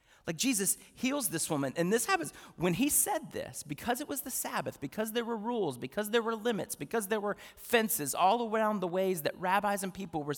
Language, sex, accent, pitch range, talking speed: English, male, American, 140-195 Hz, 215 wpm